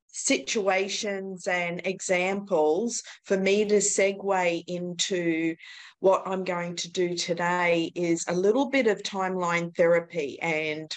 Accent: Australian